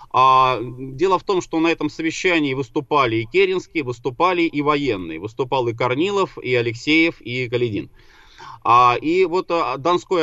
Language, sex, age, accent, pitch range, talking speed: Russian, male, 20-39, native, 120-155 Hz, 135 wpm